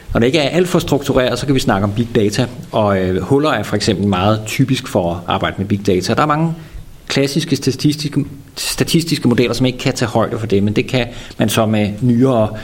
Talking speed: 235 wpm